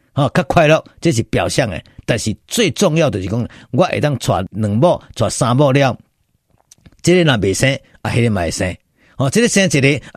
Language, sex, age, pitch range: Chinese, male, 50-69, 125-185 Hz